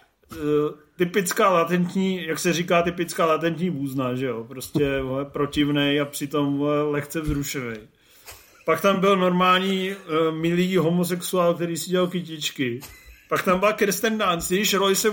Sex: male